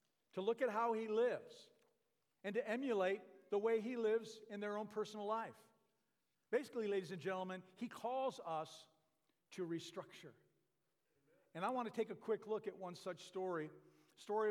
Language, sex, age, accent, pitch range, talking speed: English, male, 50-69, American, 170-225 Hz, 165 wpm